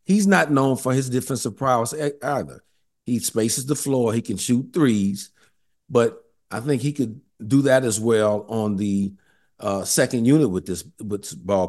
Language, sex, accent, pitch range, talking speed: English, male, American, 105-145 Hz, 175 wpm